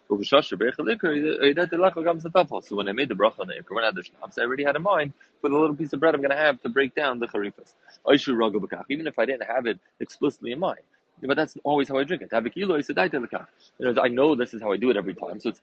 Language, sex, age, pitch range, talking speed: English, male, 20-39, 105-140 Hz, 220 wpm